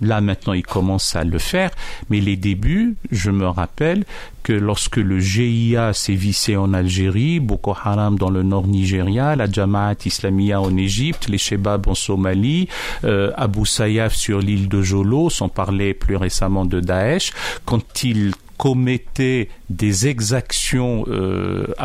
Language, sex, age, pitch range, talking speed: French, male, 50-69, 100-150 Hz, 150 wpm